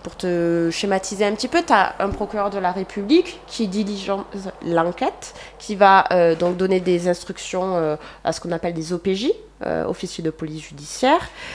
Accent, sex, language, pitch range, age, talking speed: French, female, French, 170-215 Hz, 20-39, 180 wpm